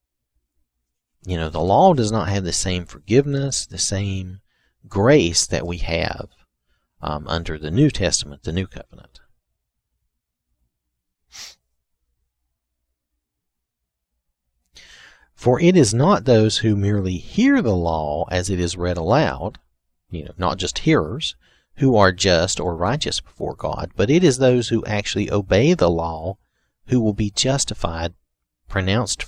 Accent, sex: American, male